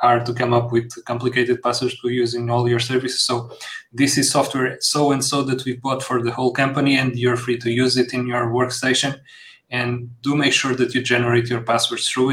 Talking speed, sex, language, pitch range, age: 215 wpm, male, English, 120-135 Hz, 30-49